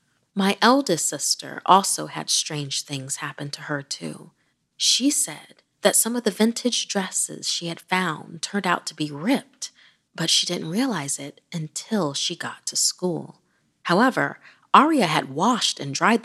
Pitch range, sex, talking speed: 150-200 Hz, female, 160 wpm